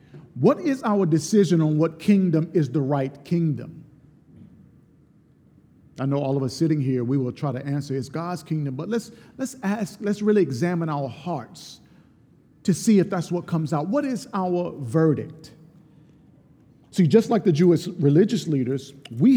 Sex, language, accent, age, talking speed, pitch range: male, English, American, 50-69, 165 wpm, 150-200 Hz